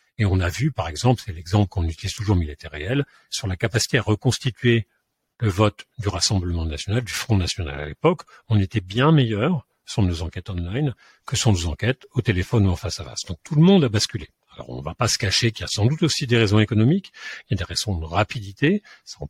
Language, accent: French, French